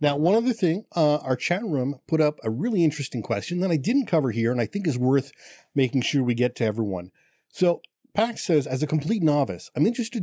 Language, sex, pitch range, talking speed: English, male, 120-160 Hz, 230 wpm